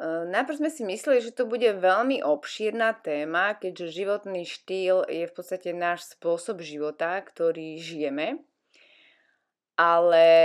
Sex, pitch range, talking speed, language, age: female, 160-210 Hz, 125 wpm, Slovak, 20-39